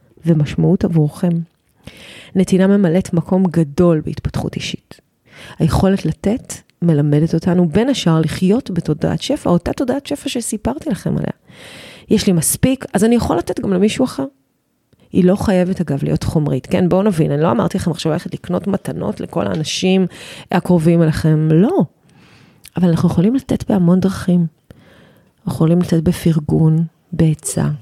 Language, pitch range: Hebrew, 160-190 Hz